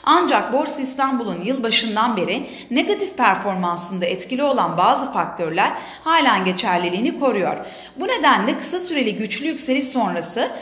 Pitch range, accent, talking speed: 195-275 Hz, native, 120 wpm